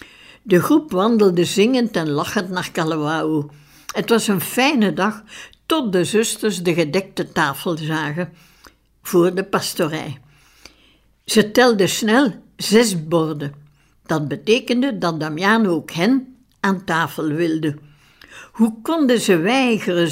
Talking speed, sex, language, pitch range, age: 120 wpm, female, Dutch, 170-230 Hz, 60-79